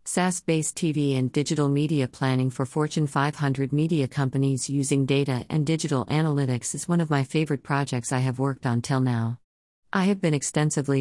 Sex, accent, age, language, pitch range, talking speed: female, American, 50-69, English, 130-170 Hz, 175 wpm